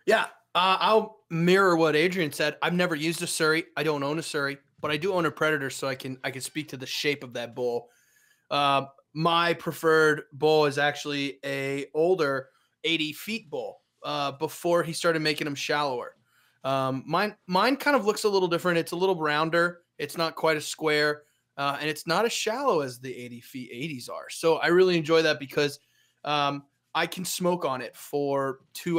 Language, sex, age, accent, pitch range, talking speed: English, male, 30-49, American, 140-175 Hz, 200 wpm